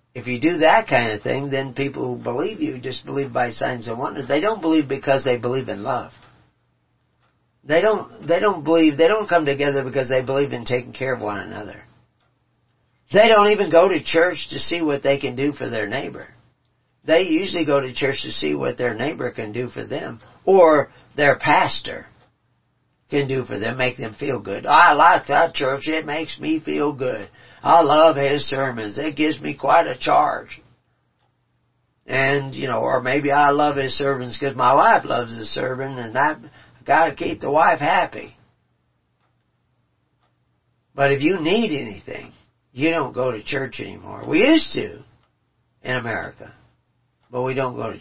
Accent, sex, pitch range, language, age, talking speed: American, male, 125-145 Hz, English, 50-69, 185 wpm